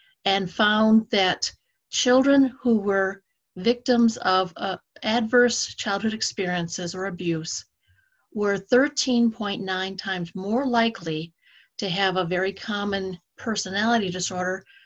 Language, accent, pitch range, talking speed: English, American, 185-230 Hz, 105 wpm